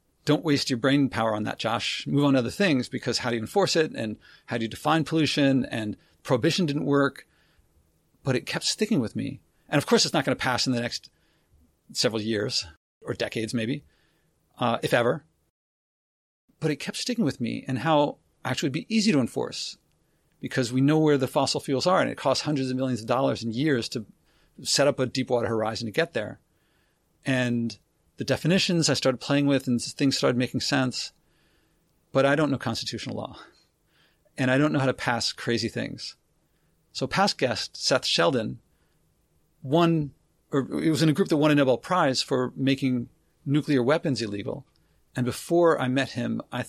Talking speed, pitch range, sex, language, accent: 195 wpm, 120-150 Hz, male, English, American